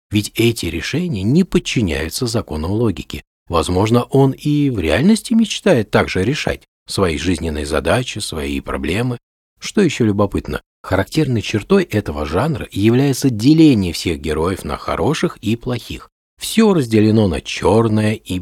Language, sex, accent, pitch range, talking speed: Russian, male, native, 90-130 Hz, 130 wpm